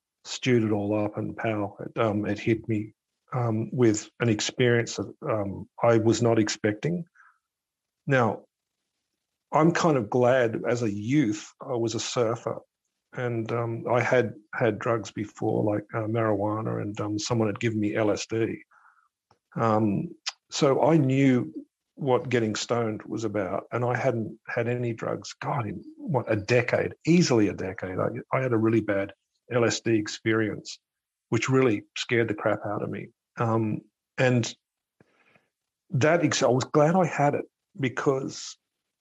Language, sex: English, male